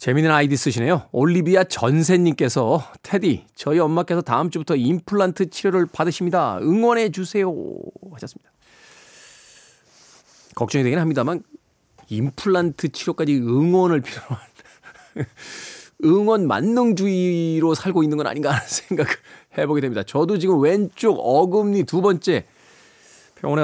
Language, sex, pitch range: Korean, male, 135-180 Hz